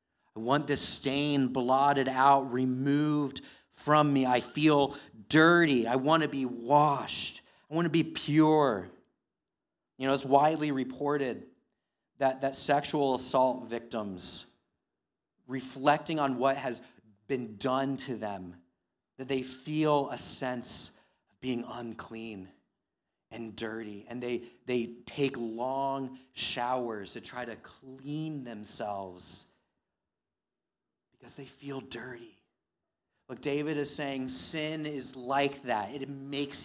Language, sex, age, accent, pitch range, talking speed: English, male, 30-49, American, 120-145 Hz, 120 wpm